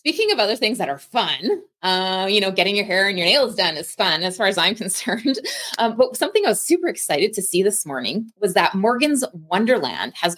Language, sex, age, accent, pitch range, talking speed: English, female, 20-39, American, 165-235 Hz, 230 wpm